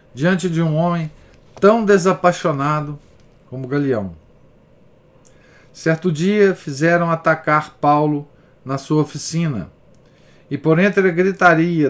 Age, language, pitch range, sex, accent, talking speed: 50-69, Portuguese, 140-175 Hz, male, Brazilian, 105 wpm